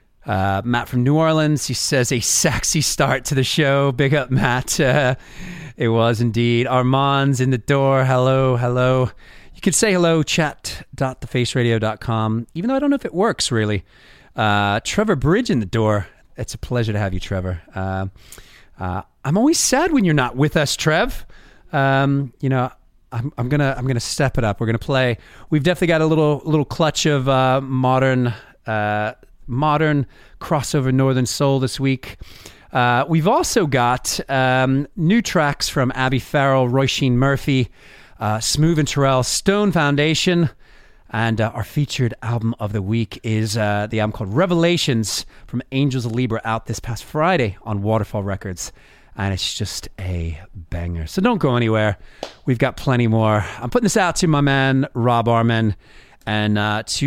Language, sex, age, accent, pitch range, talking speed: English, male, 30-49, American, 110-145 Hz, 170 wpm